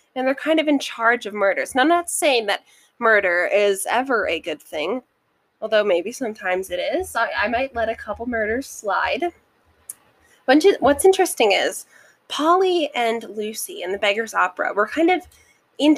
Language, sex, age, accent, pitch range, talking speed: English, female, 10-29, American, 205-290 Hz, 175 wpm